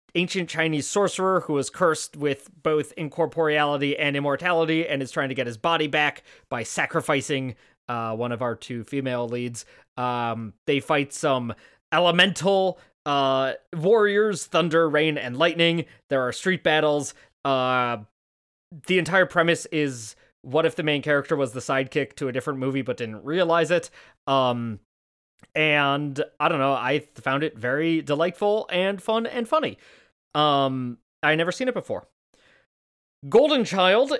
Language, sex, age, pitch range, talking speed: English, male, 20-39, 130-170 Hz, 150 wpm